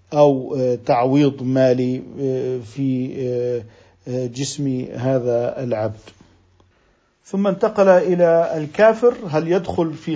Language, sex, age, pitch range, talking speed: Arabic, male, 50-69, 145-185 Hz, 85 wpm